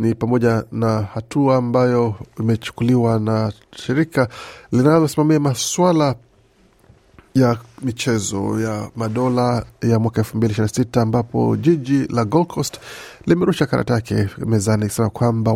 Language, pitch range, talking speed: Swahili, 110-130 Hz, 110 wpm